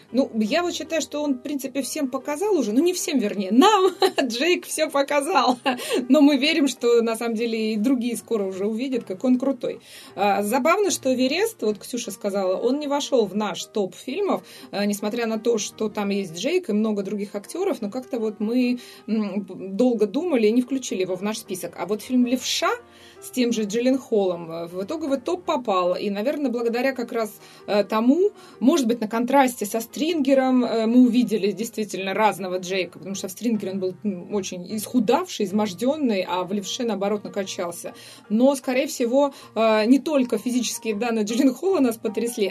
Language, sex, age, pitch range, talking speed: Russian, female, 20-39, 205-270 Hz, 180 wpm